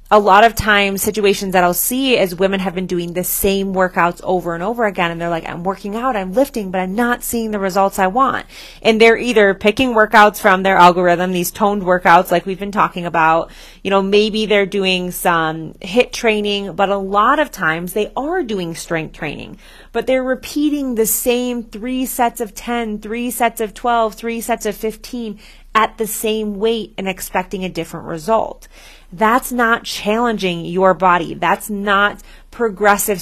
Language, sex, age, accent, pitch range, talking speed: English, female, 30-49, American, 180-225 Hz, 190 wpm